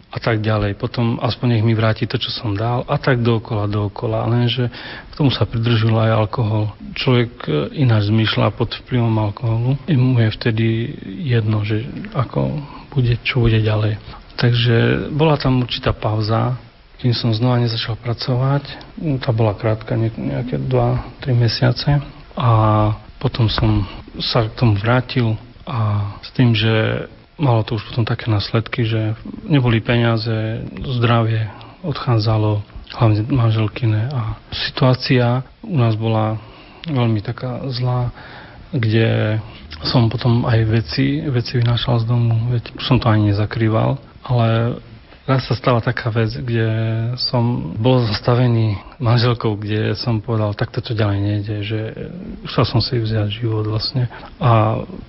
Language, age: Slovak, 40-59